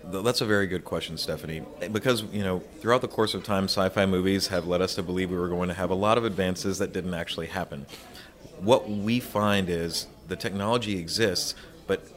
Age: 30-49